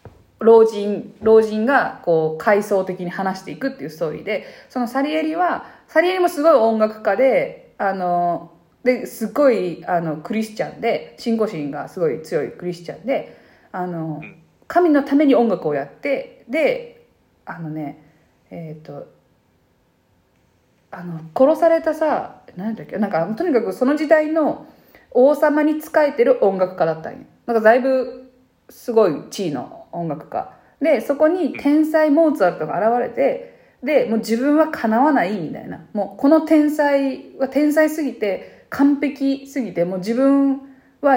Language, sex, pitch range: Japanese, female, 185-290 Hz